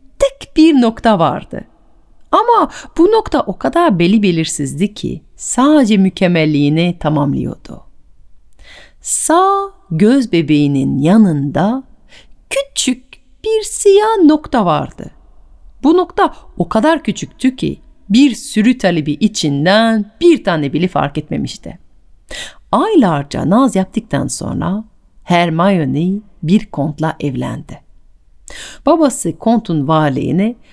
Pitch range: 160-260 Hz